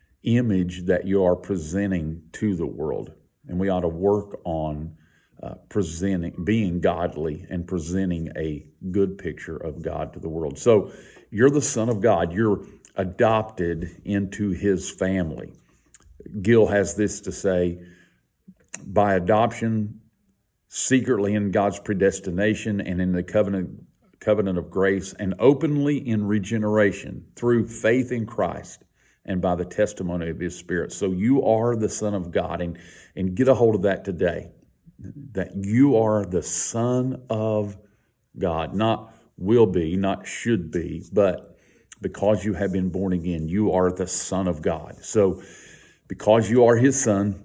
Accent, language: American, English